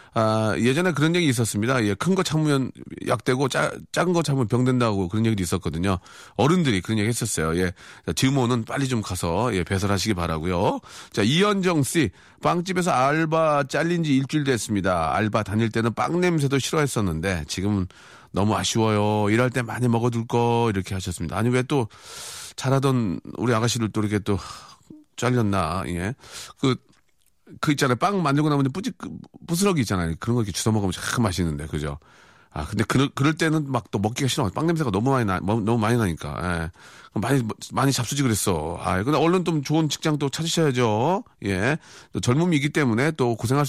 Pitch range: 100-145 Hz